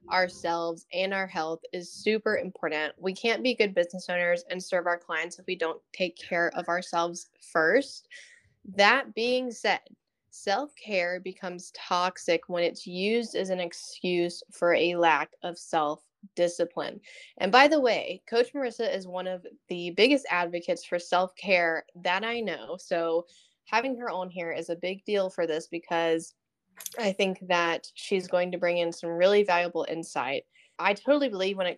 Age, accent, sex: 10-29, American, female